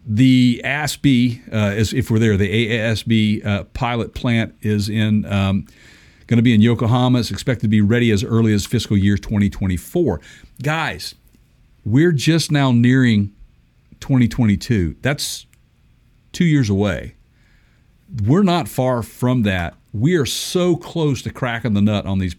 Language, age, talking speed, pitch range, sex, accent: English, 50-69, 145 wpm, 105-130 Hz, male, American